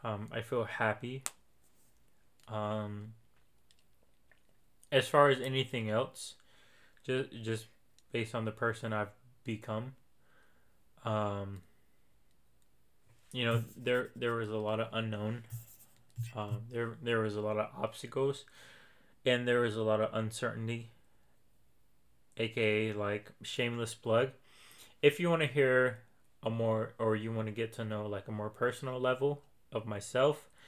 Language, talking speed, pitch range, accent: English, 130 wpm, 110-125 Hz, American